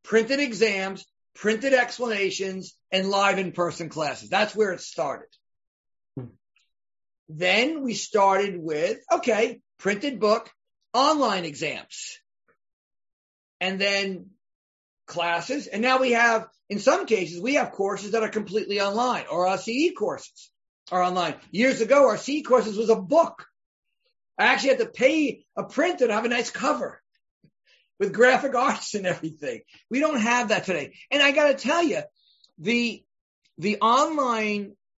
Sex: male